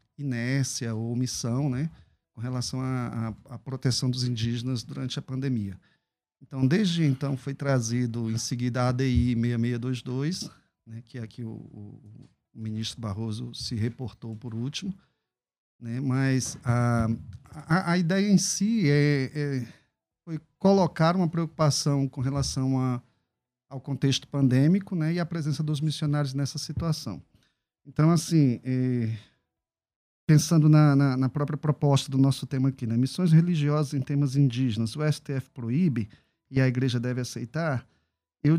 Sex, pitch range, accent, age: male, 120-150 Hz, Brazilian, 40-59